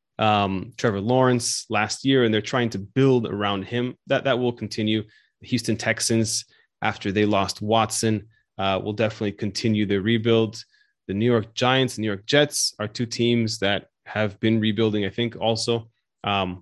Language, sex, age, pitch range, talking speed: English, male, 20-39, 105-130 Hz, 175 wpm